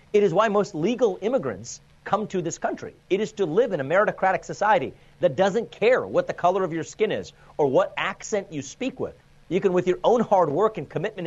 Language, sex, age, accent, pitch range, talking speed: English, male, 40-59, American, 145-210 Hz, 230 wpm